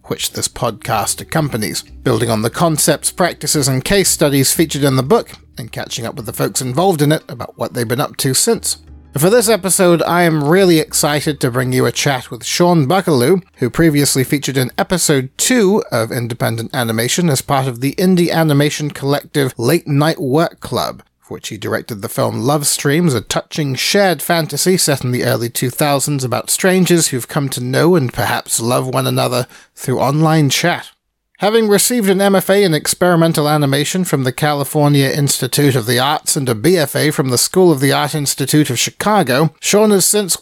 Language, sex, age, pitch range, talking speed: English, male, 40-59, 135-175 Hz, 185 wpm